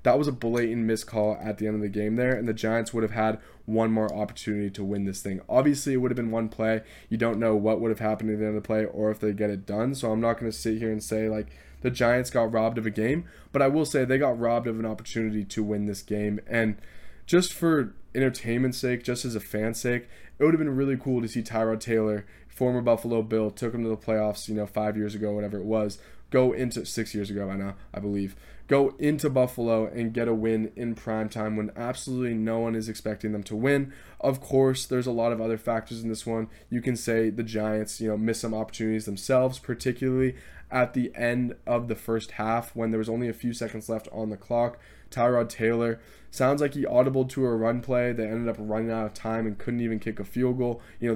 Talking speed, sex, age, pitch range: 250 wpm, male, 20-39, 110-125 Hz